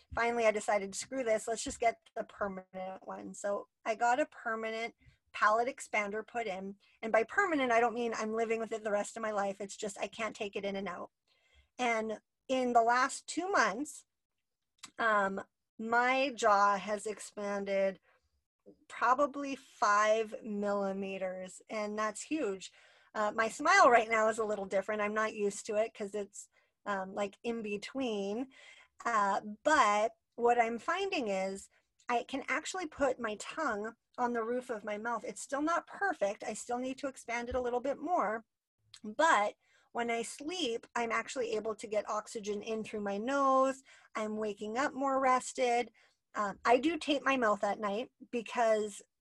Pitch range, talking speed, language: 205-255 Hz, 175 wpm, English